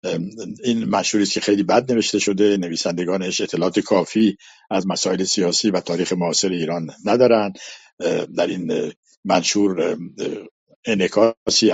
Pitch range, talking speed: 95-110 Hz, 110 wpm